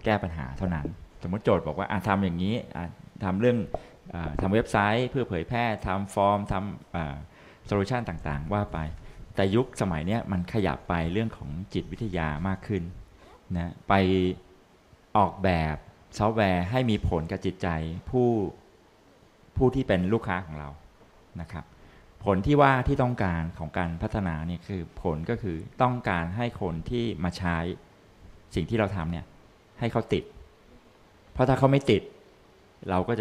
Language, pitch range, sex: Thai, 85-110 Hz, male